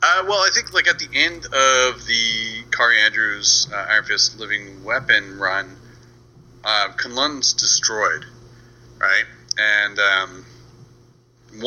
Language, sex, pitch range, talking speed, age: English, male, 105-120 Hz, 125 wpm, 30-49